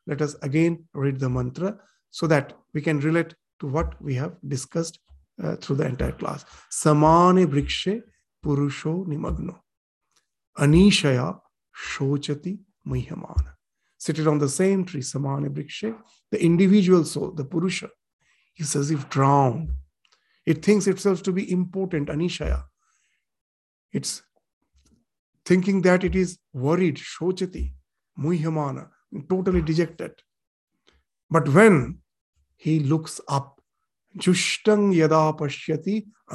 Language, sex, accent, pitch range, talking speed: English, male, Indian, 140-180 Hz, 110 wpm